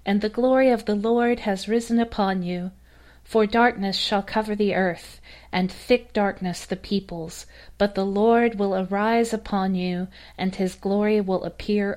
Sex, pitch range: female, 180-210 Hz